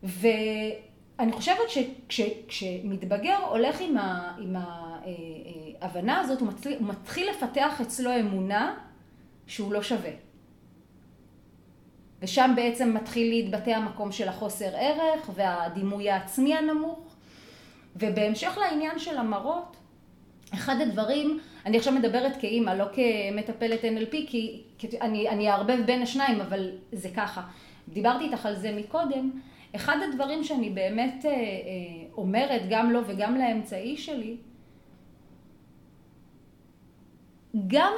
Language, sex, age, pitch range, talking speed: Hebrew, female, 30-49, 205-270 Hz, 110 wpm